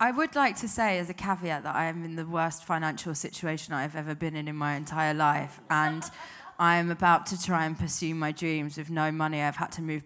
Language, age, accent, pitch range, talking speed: English, 20-39, British, 155-195 Hz, 240 wpm